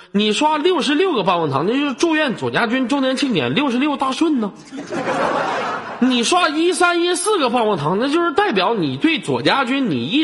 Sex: male